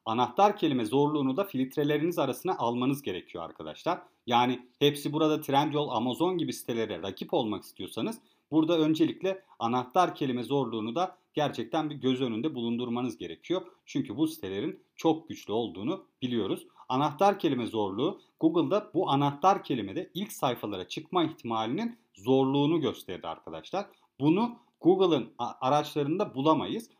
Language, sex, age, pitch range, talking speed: Turkish, male, 40-59, 125-180 Hz, 125 wpm